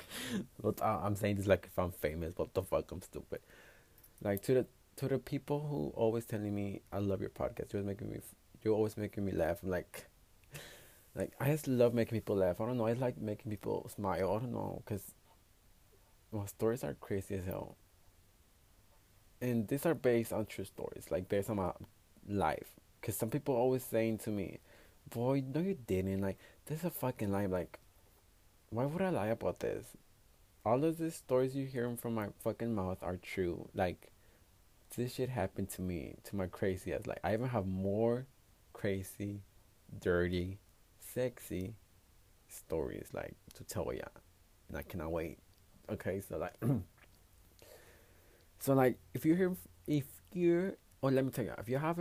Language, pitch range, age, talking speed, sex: English, 95-125 Hz, 20-39, 180 wpm, male